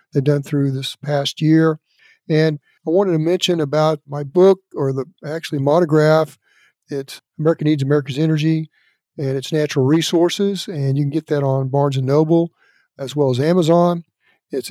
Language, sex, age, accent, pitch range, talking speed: English, male, 50-69, American, 140-160 Hz, 165 wpm